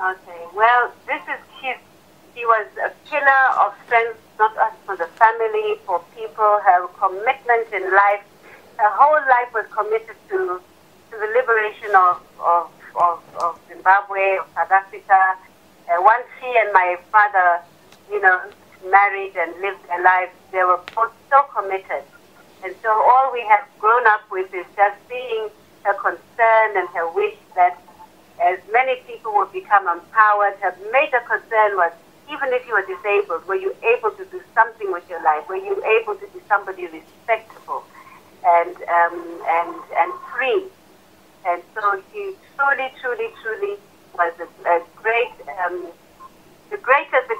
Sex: female